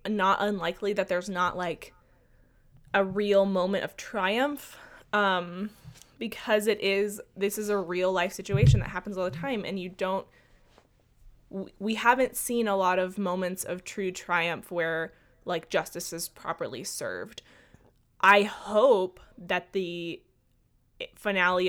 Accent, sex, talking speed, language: American, female, 140 wpm, English